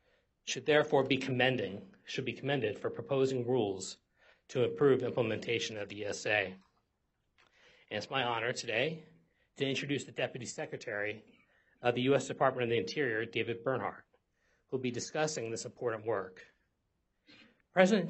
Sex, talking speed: male, 145 wpm